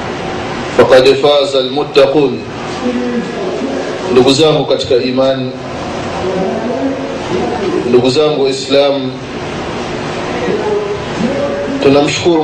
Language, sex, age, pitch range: Swahili, male, 30-49, 140-170 Hz